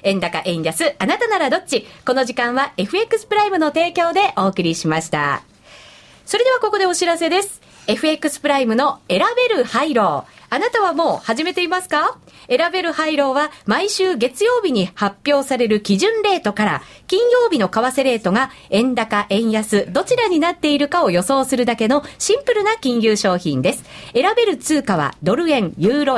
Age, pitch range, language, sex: 40-59, 225-350 Hz, Japanese, female